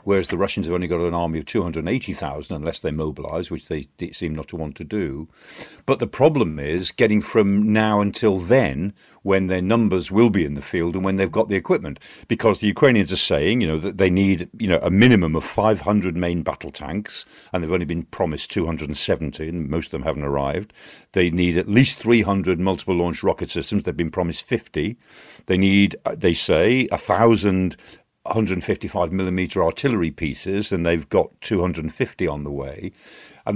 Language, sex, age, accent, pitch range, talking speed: English, male, 50-69, British, 90-115 Hz, 190 wpm